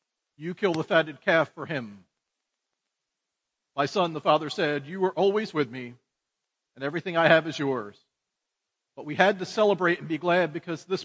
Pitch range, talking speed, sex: 155-215 Hz, 180 wpm, male